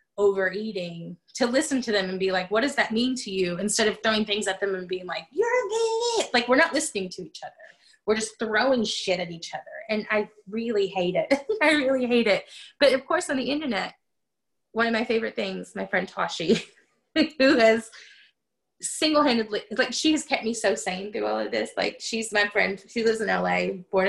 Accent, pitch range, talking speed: American, 190-260 Hz, 210 wpm